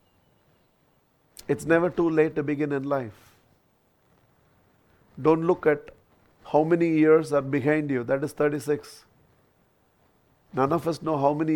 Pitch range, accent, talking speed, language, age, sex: 140-185 Hz, Indian, 135 wpm, English, 50-69, male